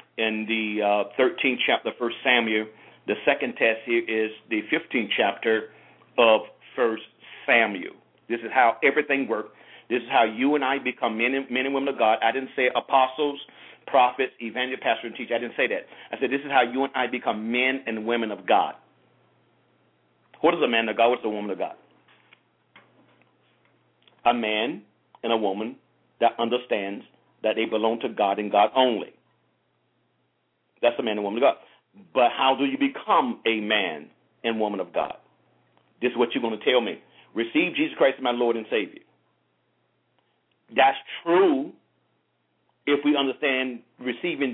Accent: American